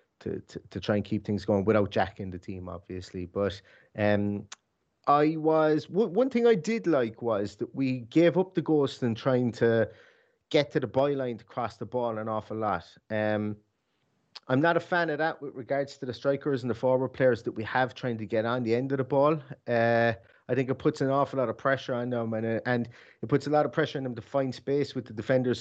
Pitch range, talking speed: 105-130 Hz, 235 wpm